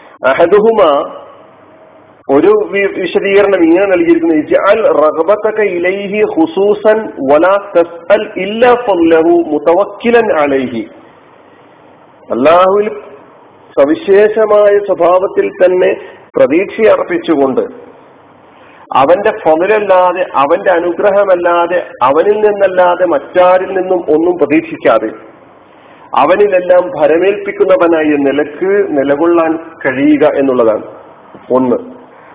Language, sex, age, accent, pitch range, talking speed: Malayalam, male, 50-69, native, 170-215 Hz, 50 wpm